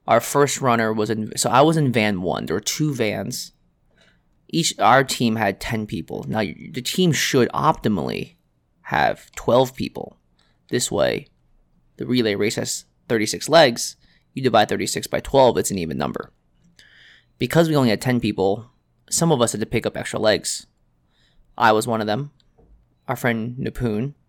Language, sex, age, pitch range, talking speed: English, male, 20-39, 105-120 Hz, 170 wpm